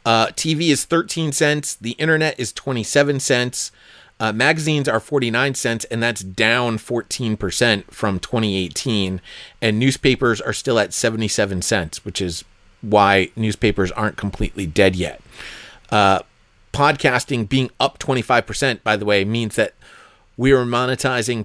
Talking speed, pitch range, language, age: 135 wpm, 105-140 Hz, English, 30-49